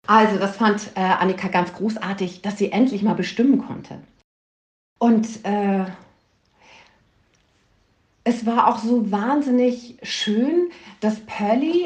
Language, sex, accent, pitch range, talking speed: German, female, German, 185-235 Hz, 115 wpm